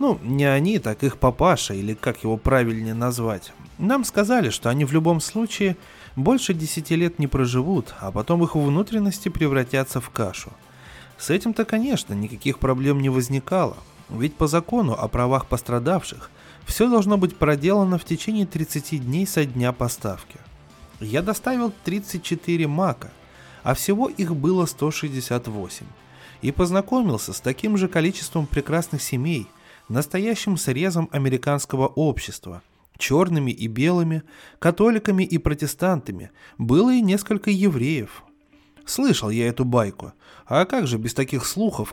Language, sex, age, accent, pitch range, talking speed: Russian, male, 20-39, native, 125-185 Hz, 135 wpm